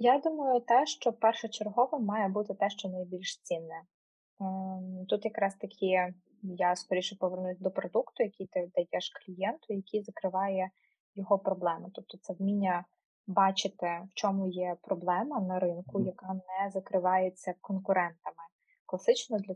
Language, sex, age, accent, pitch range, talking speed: Ukrainian, female, 20-39, native, 185-220 Hz, 130 wpm